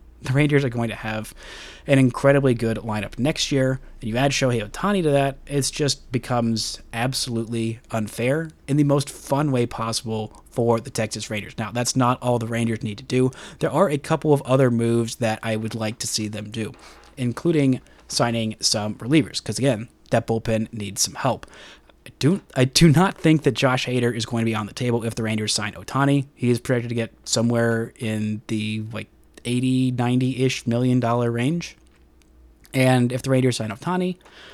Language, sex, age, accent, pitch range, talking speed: English, male, 30-49, American, 110-140 Hz, 195 wpm